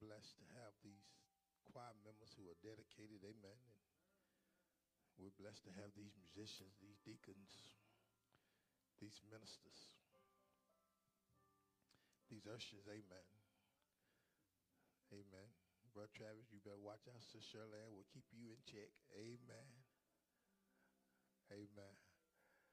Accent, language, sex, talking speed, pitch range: American, English, male, 100 wpm, 95-115 Hz